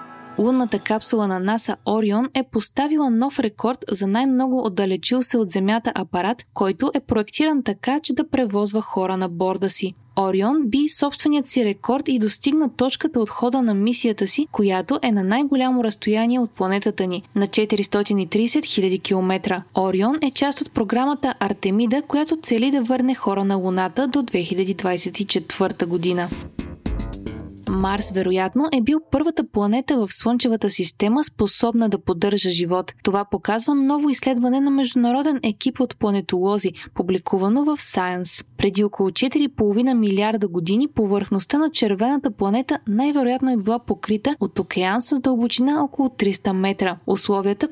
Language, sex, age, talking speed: Bulgarian, female, 20-39, 145 wpm